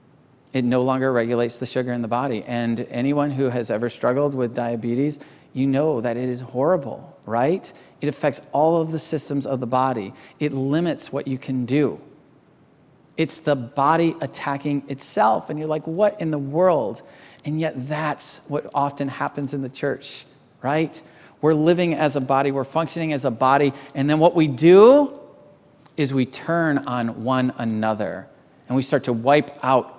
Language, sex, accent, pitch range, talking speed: English, male, American, 125-150 Hz, 175 wpm